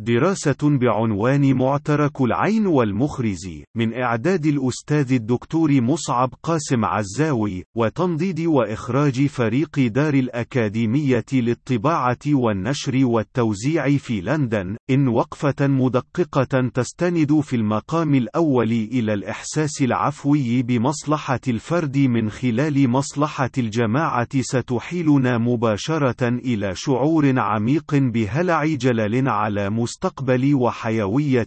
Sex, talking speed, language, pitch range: male, 90 wpm, Arabic, 115-145 Hz